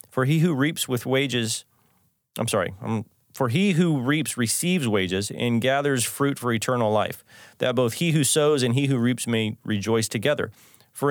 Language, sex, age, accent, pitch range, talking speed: English, male, 30-49, American, 115-140 Hz, 180 wpm